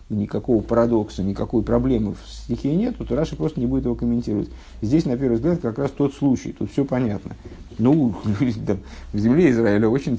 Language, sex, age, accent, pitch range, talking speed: Russian, male, 50-69, native, 110-135 Hz, 175 wpm